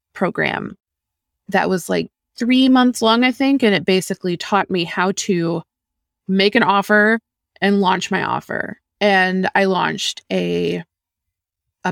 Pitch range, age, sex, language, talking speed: 155-200 Hz, 20-39, female, English, 140 wpm